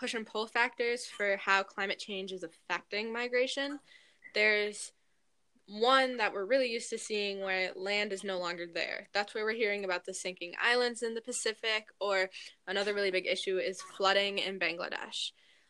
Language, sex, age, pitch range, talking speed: English, female, 10-29, 190-245 Hz, 170 wpm